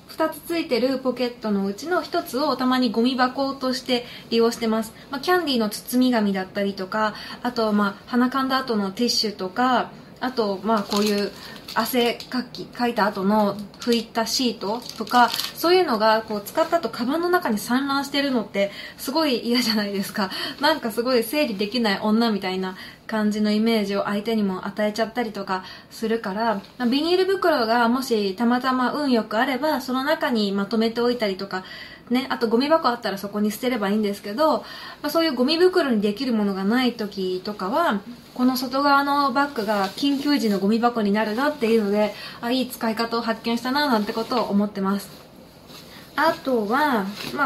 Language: Japanese